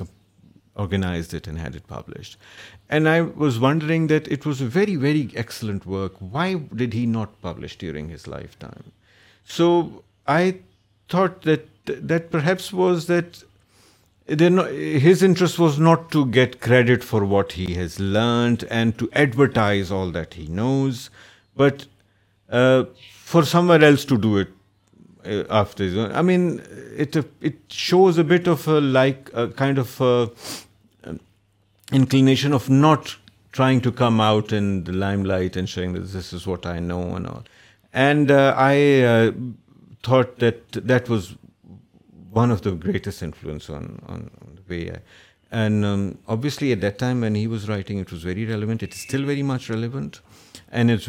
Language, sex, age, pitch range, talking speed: Urdu, male, 50-69, 100-140 Hz, 165 wpm